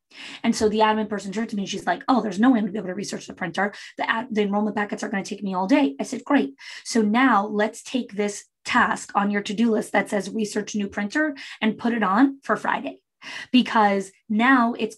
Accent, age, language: American, 20-39, English